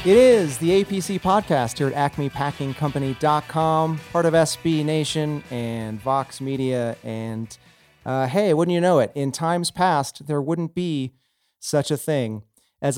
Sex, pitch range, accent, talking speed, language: male, 120-150 Hz, American, 150 wpm, English